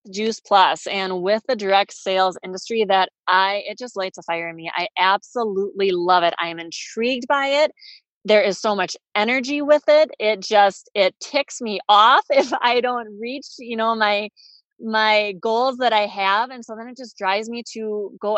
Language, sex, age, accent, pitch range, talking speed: English, female, 30-49, American, 185-225 Hz, 195 wpm